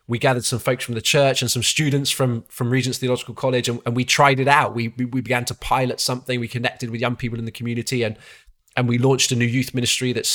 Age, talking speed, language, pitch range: 20-39, 260 wpm, English, 120-135 Hz